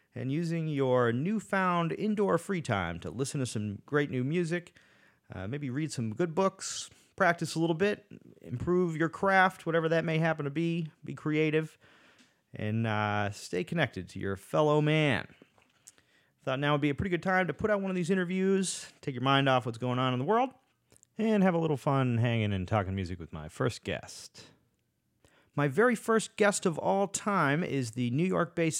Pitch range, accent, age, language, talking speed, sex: 115-165 Hz, American, 30-49, English, 195 wpm, male